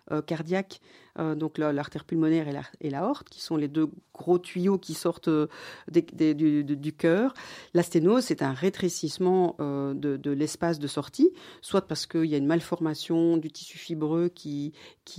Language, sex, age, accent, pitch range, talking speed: French, female, 50-69, French, 150-180 Hz, 185 wpm